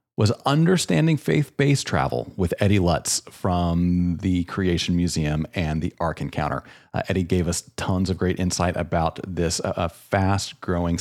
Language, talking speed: English, 145 wpm